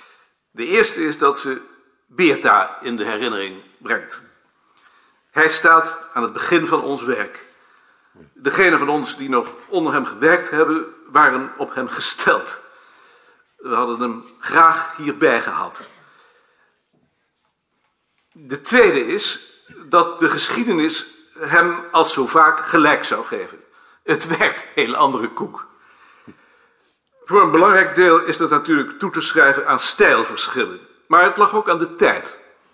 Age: 50-69